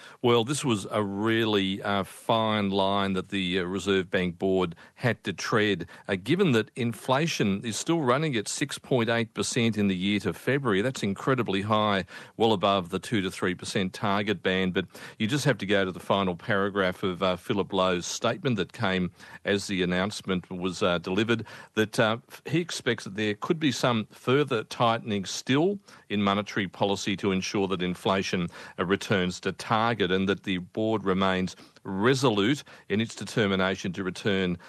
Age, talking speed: 40-59, 170 wpm